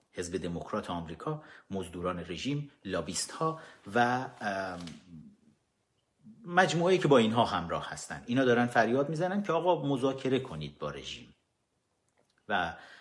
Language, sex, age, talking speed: Persian, male, 40-59, 115 wpm